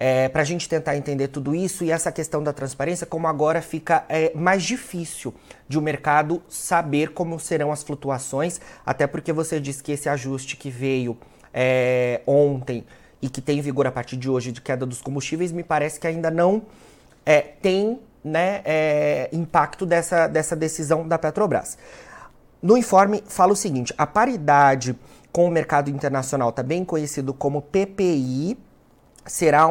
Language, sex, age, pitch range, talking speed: Portuguese, male, 30-49, 140-180 Hz, 170 wpm